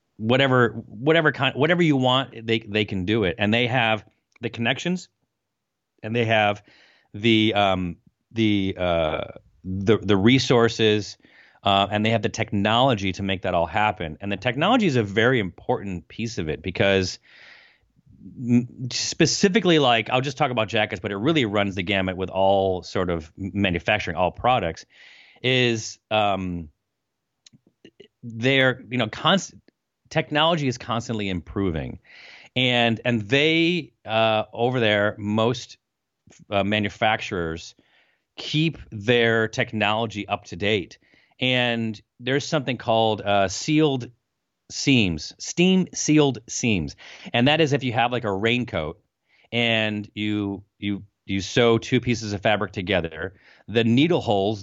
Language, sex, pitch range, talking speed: English, male, 100-125 Hz, 140 wpm